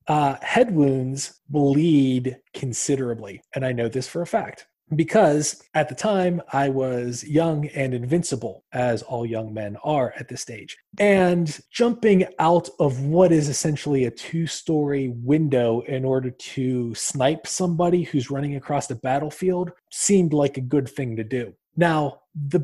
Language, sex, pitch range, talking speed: English, male, 130-160 Hz, 155 wpm